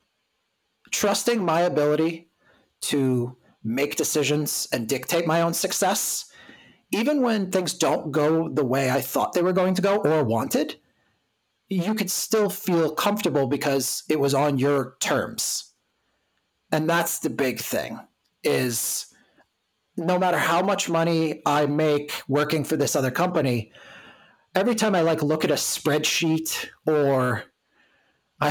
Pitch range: 145-180 Hz